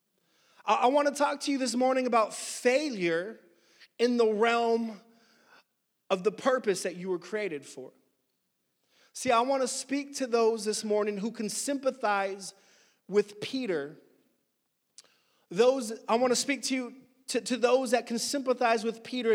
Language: English